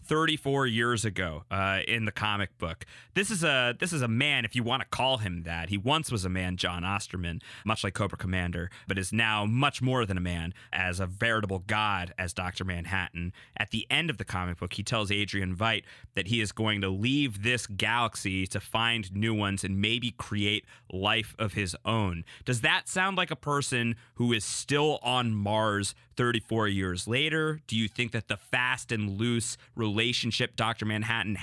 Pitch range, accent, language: 100-125 Hz, American, English